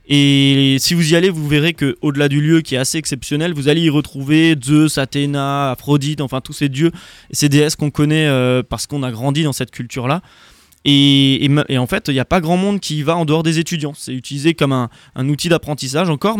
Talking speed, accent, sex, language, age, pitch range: 230 wpm, French, male, French, 20-39, 130-155 Hz